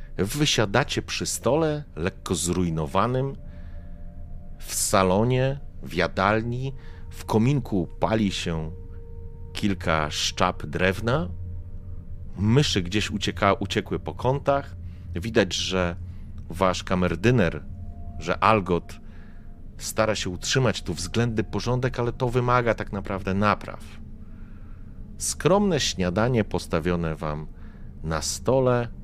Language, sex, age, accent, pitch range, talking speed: Polish, male, 40-59, native, 85-110 Hz, 95 wpm